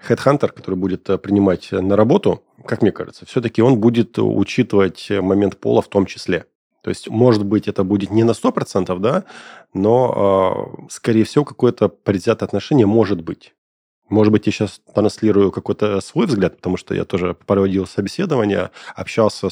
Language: Russian